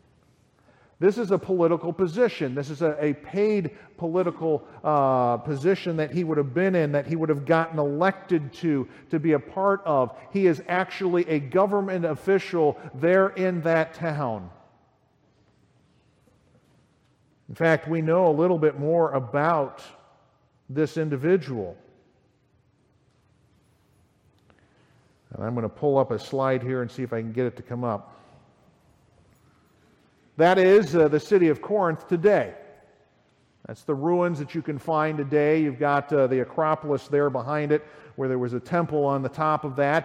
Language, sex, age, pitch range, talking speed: English, male, 50-69, 140-170 Hz, 155 wpm